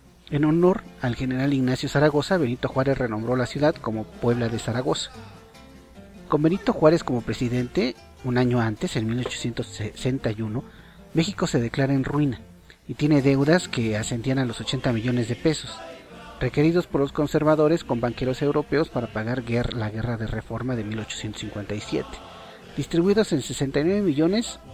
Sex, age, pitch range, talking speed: male, 40-59, 120-150 Hz, 145 wpm